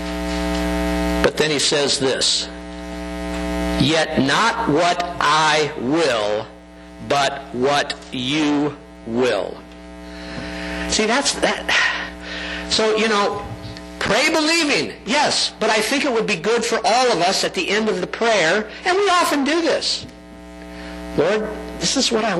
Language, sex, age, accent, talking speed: English, male, 60-79, American, 135 wpm